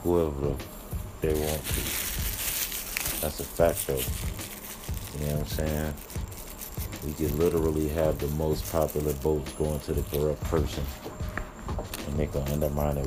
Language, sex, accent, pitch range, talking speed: English, male, American, 70-85 Hz, 140 wpm